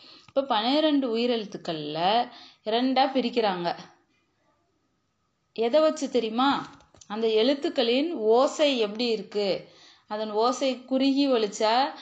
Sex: female